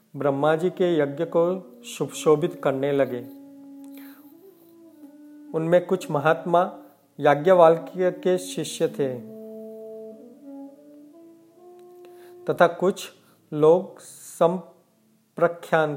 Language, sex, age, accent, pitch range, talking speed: Hindi, male, 40-59, native, 150-195 Hz, 70 wpm